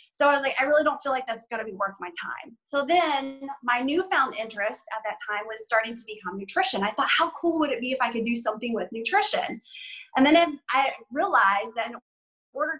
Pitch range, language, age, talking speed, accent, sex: 215-295 Hz, English, 20-39, 235 wpm, American, female